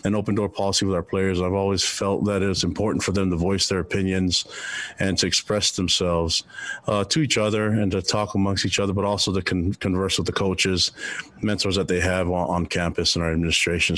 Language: English